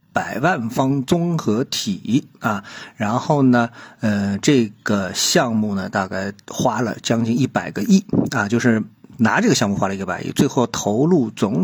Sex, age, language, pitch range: male, 50-69, Chinese, 105-135 Hz